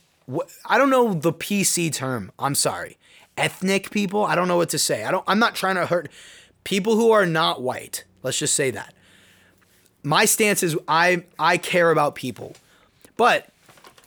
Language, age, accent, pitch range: English, 20-39, American, 150-200 Hz